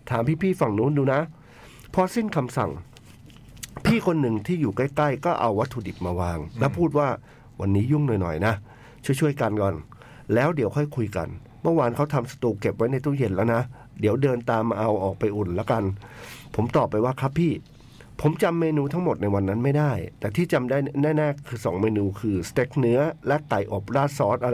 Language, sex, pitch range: Thai, male, 110-145 Hz